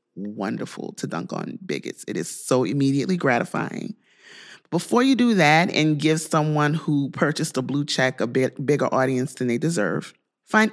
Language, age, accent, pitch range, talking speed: English, 30-49, American, 150-195 Hz, 170 wpm